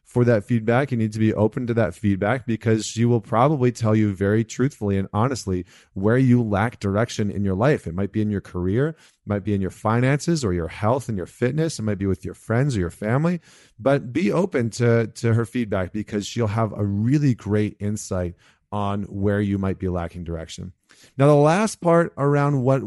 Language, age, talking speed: English, 30-49, 215 wpm